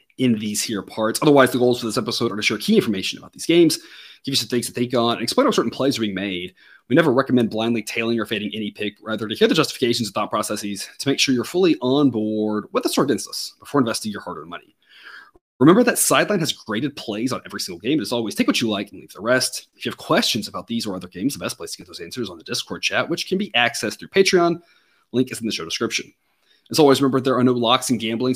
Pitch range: 105-135 Hz